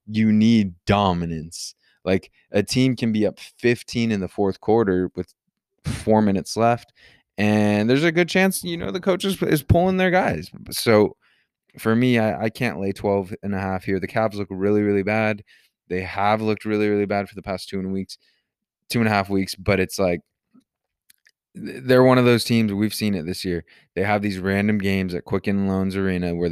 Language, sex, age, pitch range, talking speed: English, male, 20-39, 90-105 Hz, 205 wpm